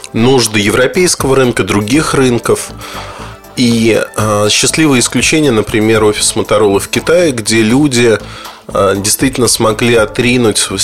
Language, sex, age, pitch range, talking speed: Russian, male, 30-49, 105-135 Hz, 110 wpm